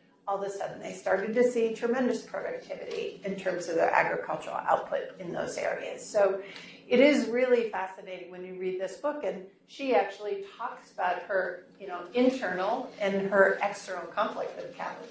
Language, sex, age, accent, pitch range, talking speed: English, female, 40-59, American, 195-255 Hz, 180 wpm